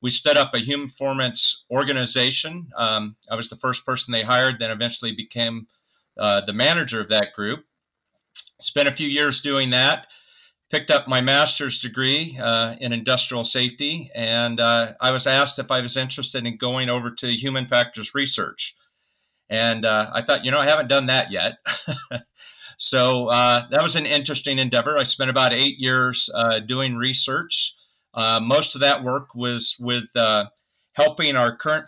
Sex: male